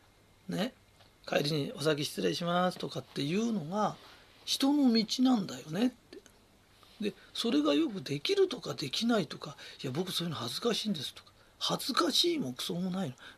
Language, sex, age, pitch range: Japanese, male, 40-59, 170-275 Hz